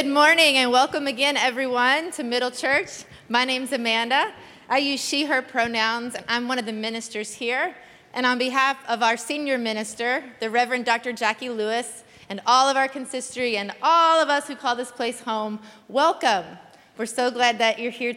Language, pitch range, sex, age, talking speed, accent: English, 230-285 Hz, female, 20-39, 190 wpm, American